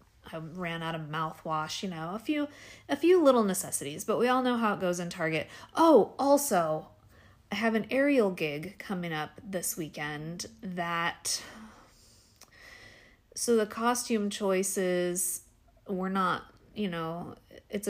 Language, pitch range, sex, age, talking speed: English, 155-200 Hz, female, 30-49, 145 wpm